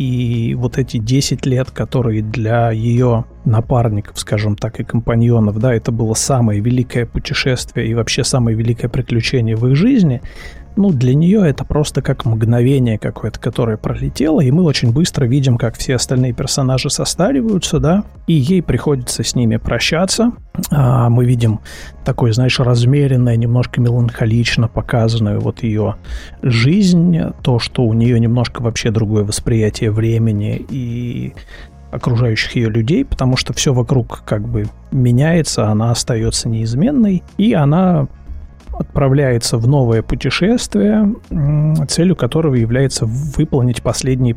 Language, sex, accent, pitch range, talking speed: Russian, male, native, 115-140 Hz, 135 wpm